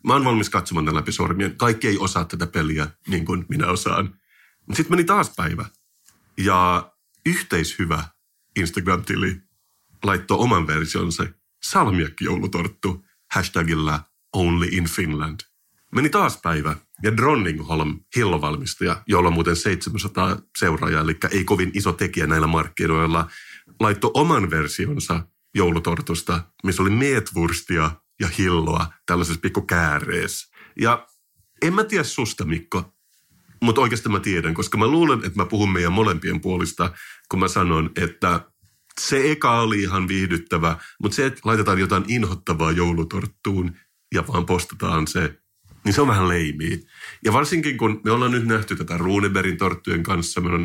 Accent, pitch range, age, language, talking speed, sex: native, 85-105 Hz, 30-49, Finnish, 135 wpm, male